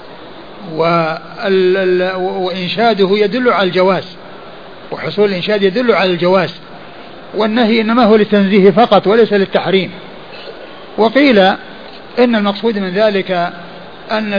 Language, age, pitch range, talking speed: Arabic, 50-69, 180-205 Hz, 90 wpm